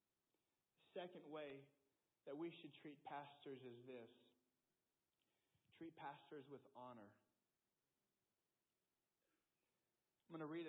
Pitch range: 135-180 Hz